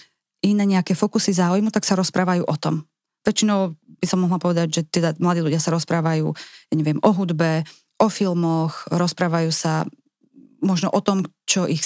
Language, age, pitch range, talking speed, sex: Slovak, 20-39, 165-200 Hz, 165 wpm, female